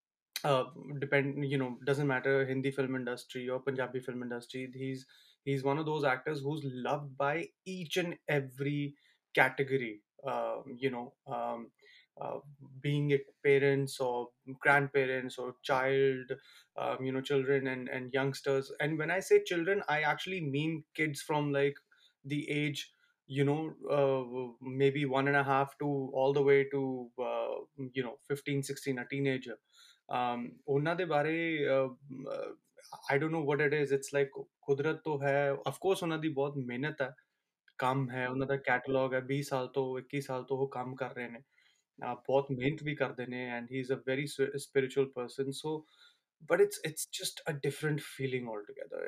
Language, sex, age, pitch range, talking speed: Punjabi, male, 20-39, 130-150 Hz, 170 wpm